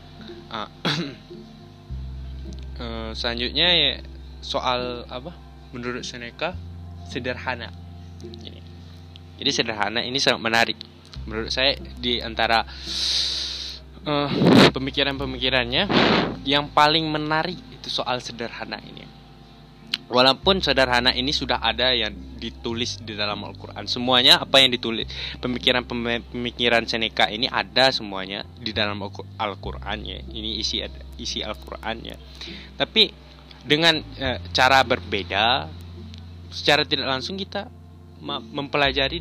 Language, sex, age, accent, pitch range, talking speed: Indonesian, male, 10-29, native, 85-130 Hz, 100 wpm